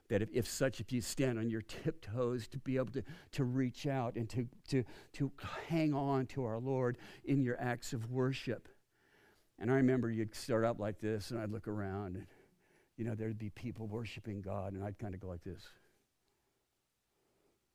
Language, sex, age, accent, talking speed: English, male, 60-79, American, 195 wpm